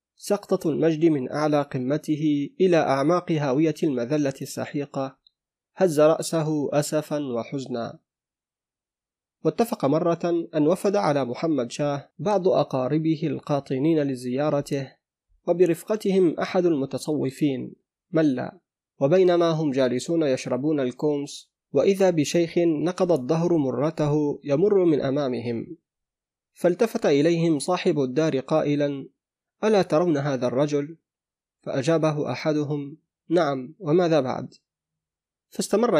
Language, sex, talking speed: Arabic, male, 95 wpm